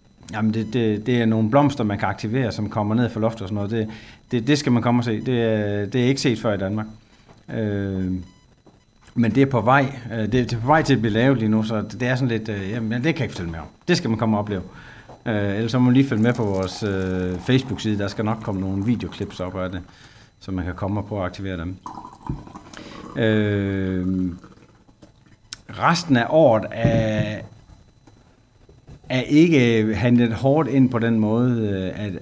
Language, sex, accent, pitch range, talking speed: Danish, male, native, 100-120 Hz, 215 wpm